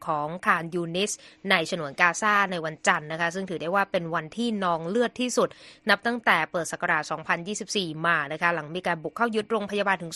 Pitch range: 175-220 Hz